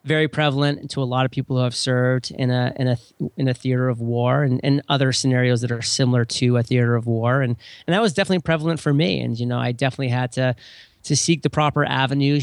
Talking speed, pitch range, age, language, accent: 245 wpm, 125-145 Hz, 30-49, English, American